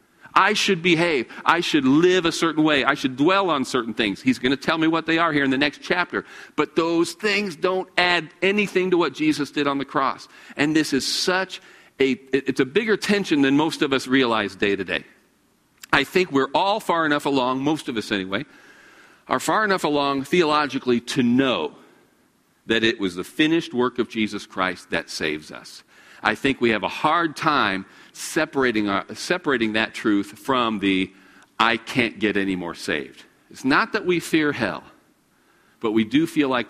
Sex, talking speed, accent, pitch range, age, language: male, 195 wpm, American, 110-160 Hz, 50-69, English